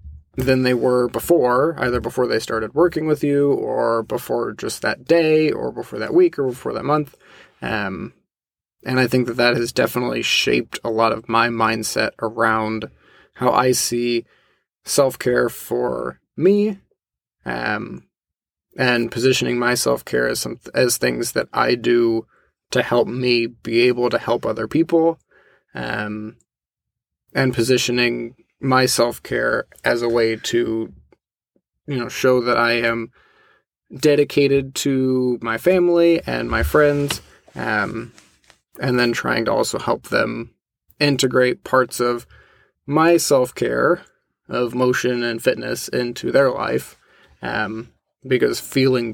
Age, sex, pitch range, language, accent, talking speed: 20-39, male, 115-130 Hz, English, American, 135 wpm